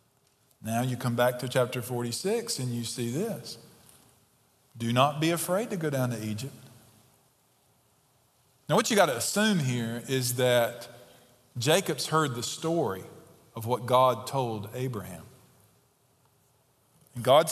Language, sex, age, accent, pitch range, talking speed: English, male, 40-59, American, 125-155 Hz, 135 wpm